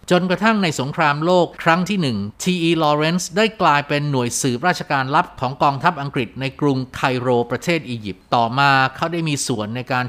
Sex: male